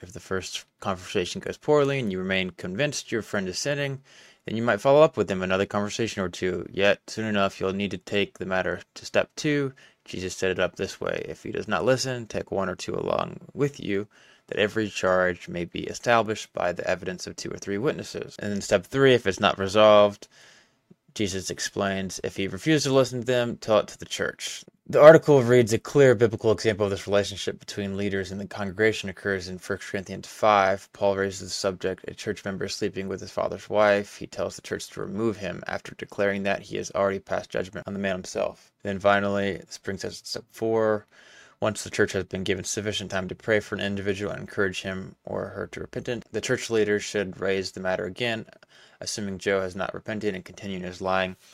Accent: American